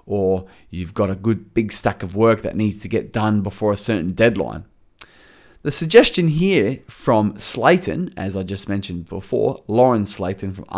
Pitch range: 105-155 Hz